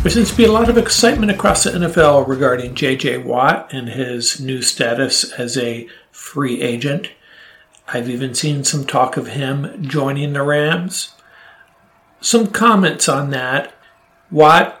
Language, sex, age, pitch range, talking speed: English, male, 50-69, 125-155 Hz, 150 wpm